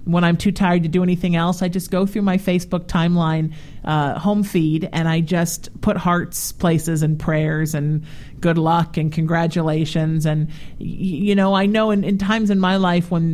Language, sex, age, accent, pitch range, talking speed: English, male, 50-69, American, 160-205 Hz, 195 wpm